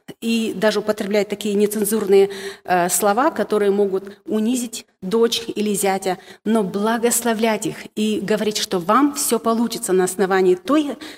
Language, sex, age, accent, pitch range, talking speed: Russian, female, 40-59, native, 195-245 Hz, 130 wpm